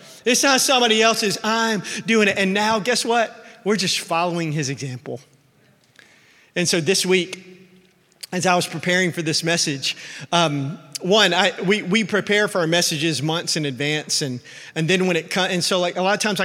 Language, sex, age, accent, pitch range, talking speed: English, male, 30-49, American, 155-195 Hz, 190 wpm